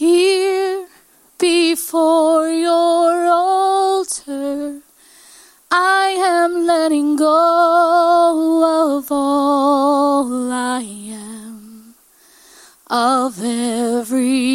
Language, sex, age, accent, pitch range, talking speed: English, female, 30-49, American, 270-340 Hz, 60 wpm